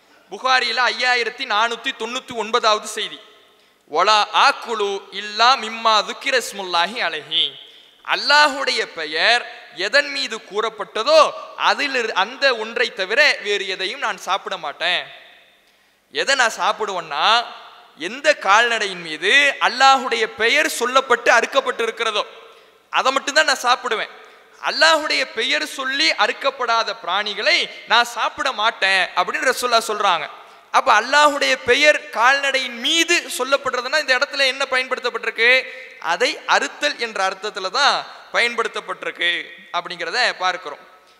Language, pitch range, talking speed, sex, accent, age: English, 205-265 Hz, 85 wpm, male, Indian, 20-39